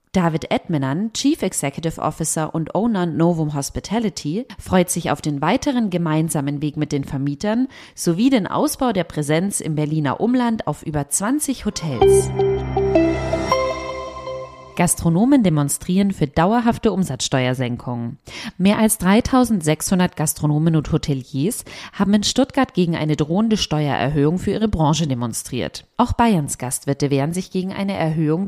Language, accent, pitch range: German, German, 145-200 Hz